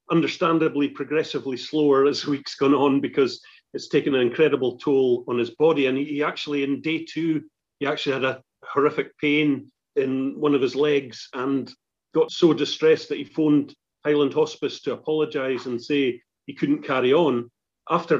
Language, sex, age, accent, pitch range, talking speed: English, male, 40-59, British, 125-155 Hz, 170 wpm